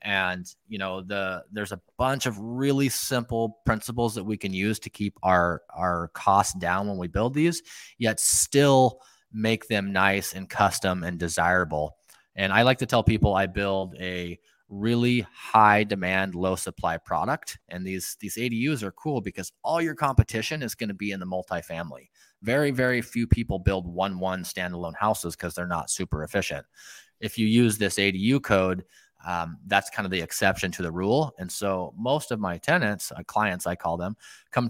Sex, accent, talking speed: male, American, 180 wpm